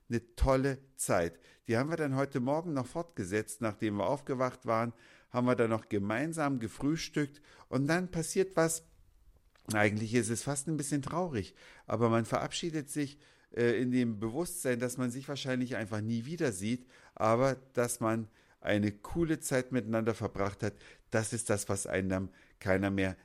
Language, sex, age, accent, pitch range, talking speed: German, male, 50-69, German, 110-140 Hz, 165 wpm